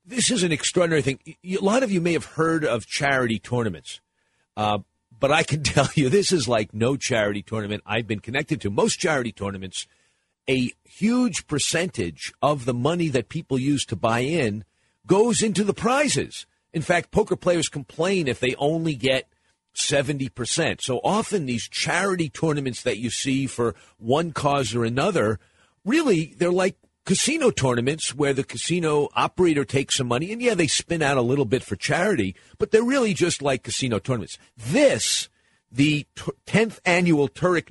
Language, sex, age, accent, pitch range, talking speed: English, male, 50-69, American, 120-175 Hz, 170 wpm